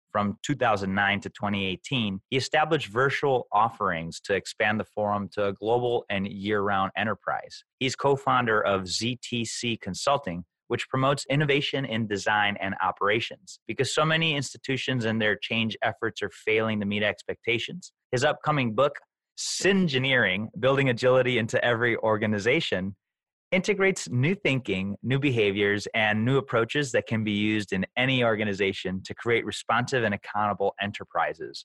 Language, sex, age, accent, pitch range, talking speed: English, male, 30-49, American, 100-125 Hz, 140 wpm